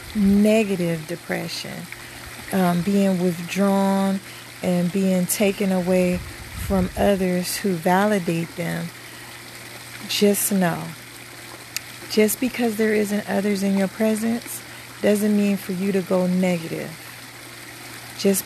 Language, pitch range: English, 180-205 Hz